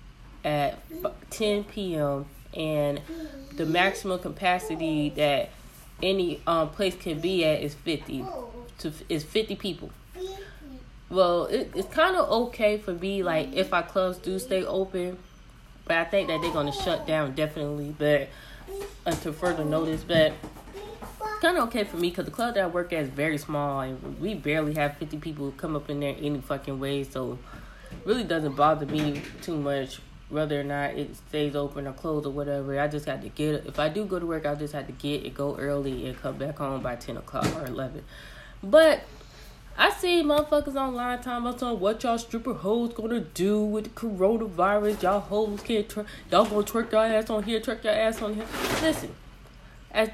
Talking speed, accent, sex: 190 wpm, American, female